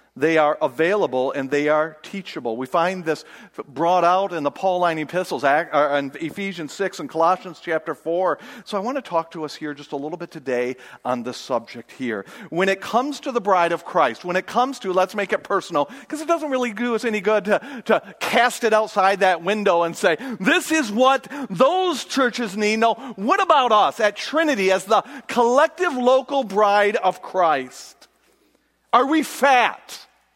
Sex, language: male, English